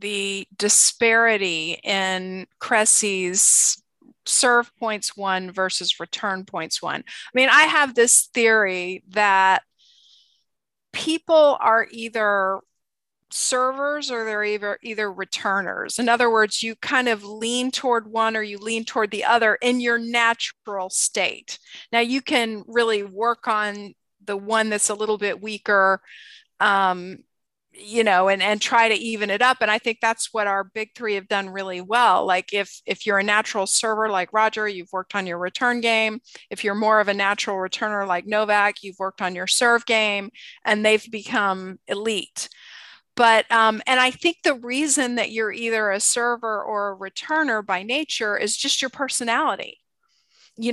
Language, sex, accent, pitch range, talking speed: English, female, American, 200-235 Hz, 160 wpm